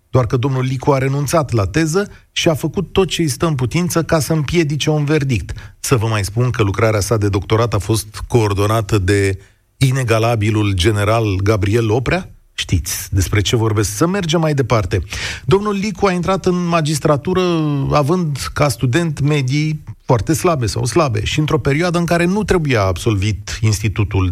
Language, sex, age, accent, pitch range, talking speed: Romanian, male, 40-59, native, 105-155 Hz, 175 wpm